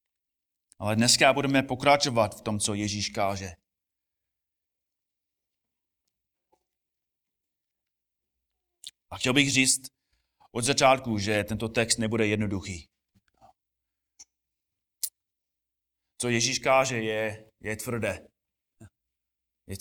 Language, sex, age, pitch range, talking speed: Czech, male, 30-49, 90-135 Hz, 80 wpm